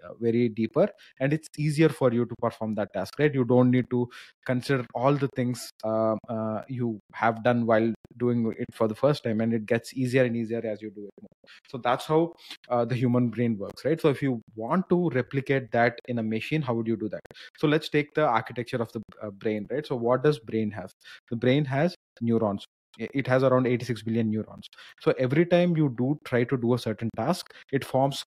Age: 20-39